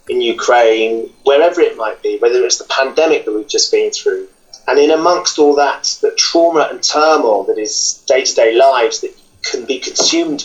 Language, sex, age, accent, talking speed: English, male, 30-49, British, 185 wpm